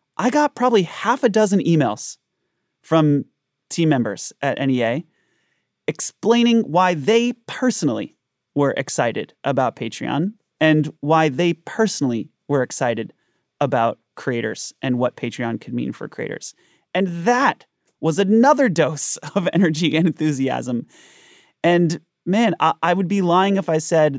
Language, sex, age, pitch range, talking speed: English, male, 30-49, 135-180 Hz, 130 wpm